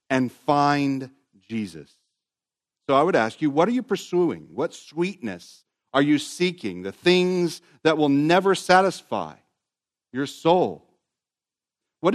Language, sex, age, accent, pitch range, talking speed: English, male, 50-69, American, 120-160 Hz, 130 wpm